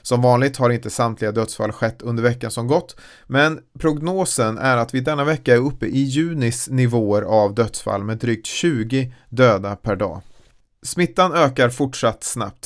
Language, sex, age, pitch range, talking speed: Swedish, male, 30-49, 110-135 Hz, 165 wpm